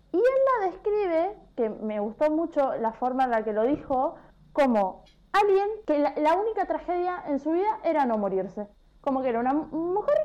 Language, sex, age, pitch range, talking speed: Spanish, female, 20-39, 210-310 Hz, 195 wpm